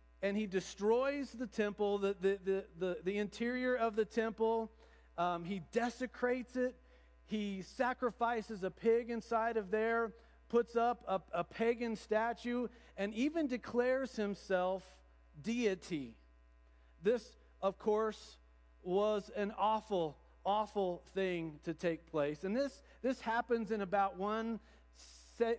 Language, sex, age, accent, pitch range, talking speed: English, male, 40-59, American, 170-225 Hz, 130 wpm